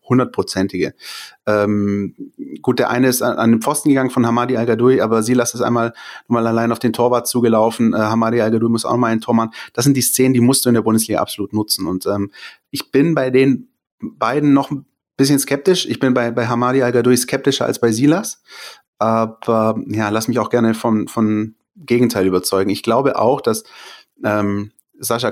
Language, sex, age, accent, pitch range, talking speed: German, male, 30-49, German, 110-125 Hz, 195 wpm